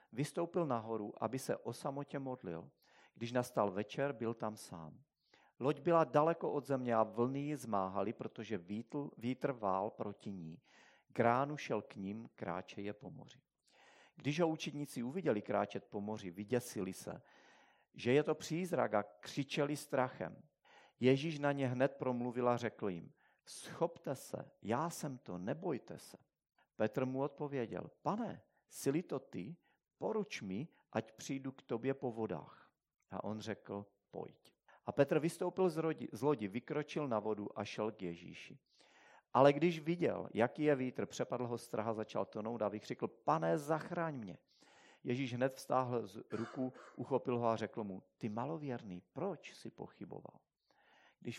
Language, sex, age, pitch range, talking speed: Czech, male, 40-59, 105-145 Hz, 150 wpm